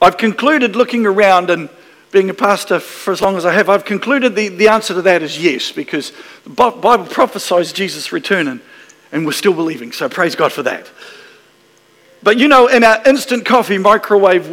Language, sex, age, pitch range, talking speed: English, male, 50-69, 190-260 Hz, 195 wpm